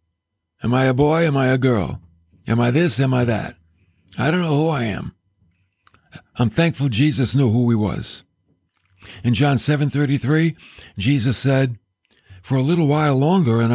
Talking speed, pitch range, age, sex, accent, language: 170 wpm, 90-140 Hz, 50-69, male, American, English